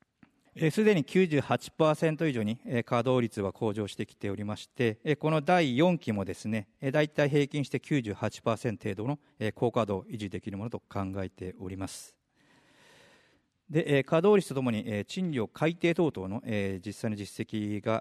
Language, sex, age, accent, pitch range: Japanese, male, 40-59, native, 105-155 Hz